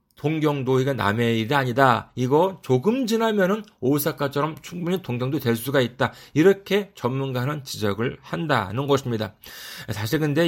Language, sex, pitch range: Korean, male, 130-180 Hz